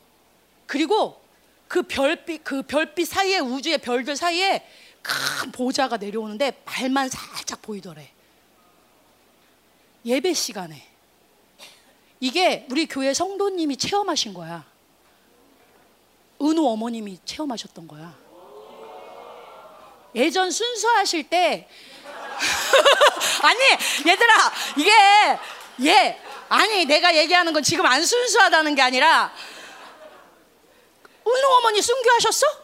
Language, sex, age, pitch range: Korean, female, 30-49, 270-420 Hz